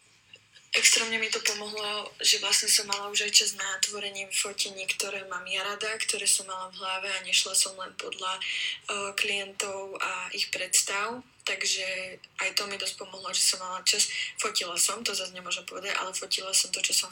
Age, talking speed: 20-39, 195 wpm